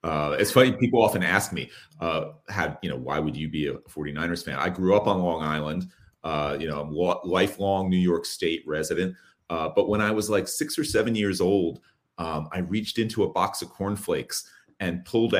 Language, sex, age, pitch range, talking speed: English, male, 30-49, 85-100 Hz, 210 wpm